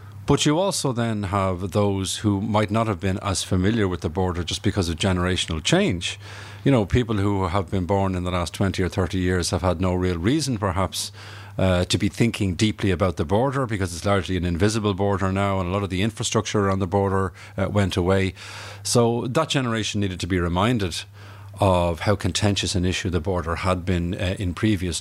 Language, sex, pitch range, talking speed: Dutch, male, 95-110 Hz, 210 wpm